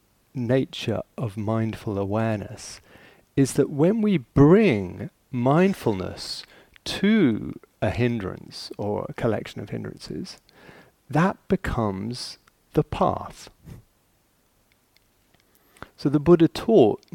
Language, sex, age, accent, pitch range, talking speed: English, male, 40-59, British, 110-150 Hz, 90 wpm